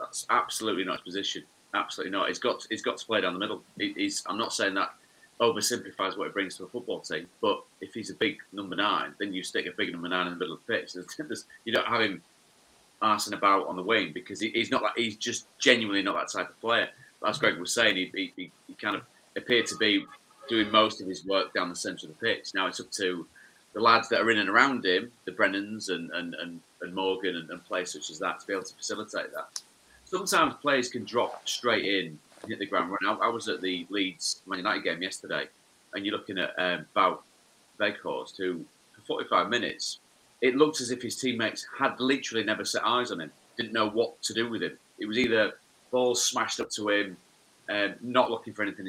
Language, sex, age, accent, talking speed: English, male, 30-49, British, 235 wpm